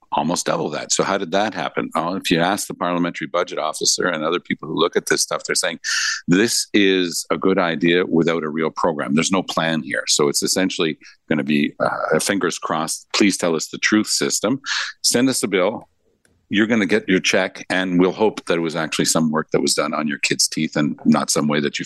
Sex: male